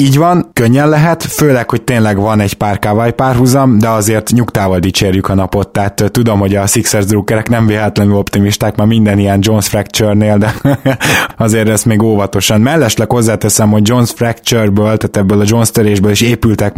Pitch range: 100-115 Hz